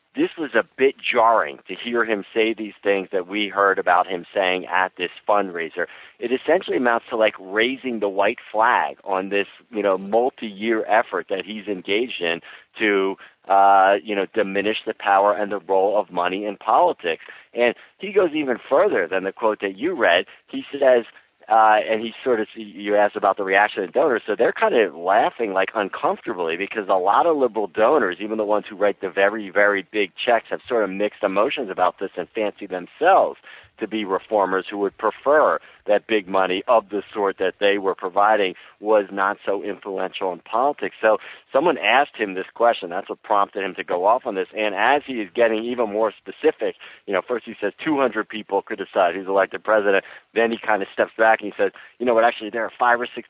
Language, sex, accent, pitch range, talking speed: English, male, American, 100-115 Hz, 210 wpm